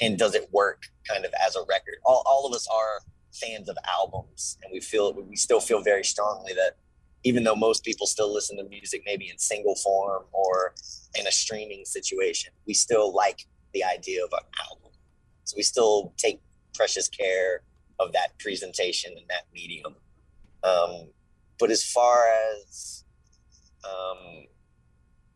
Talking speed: 165 wpm